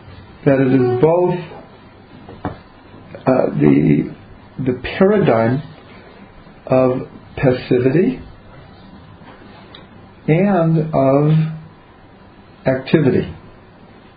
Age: 50-69